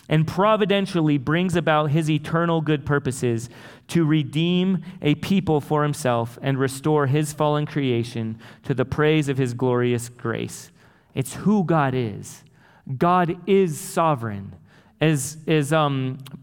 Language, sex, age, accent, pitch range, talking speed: English, male, 30-49, American, 135-170 Hz, 130 wpm